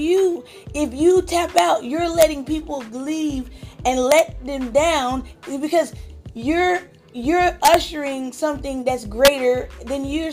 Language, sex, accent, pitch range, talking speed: English, female, American, 265-315 Hz, 130 wpm